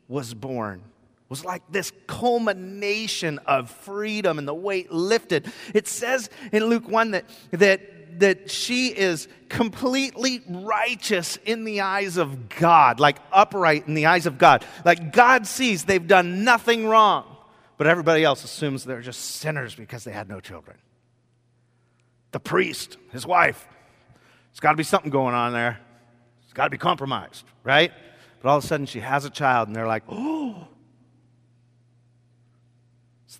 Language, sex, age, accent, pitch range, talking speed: English, male, 30-49, American, 120-190 Hz, 155 wpm